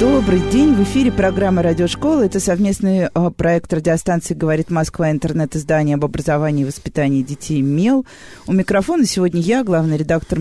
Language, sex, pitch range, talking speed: Russian, female, 170-245 Hz, 145 wpm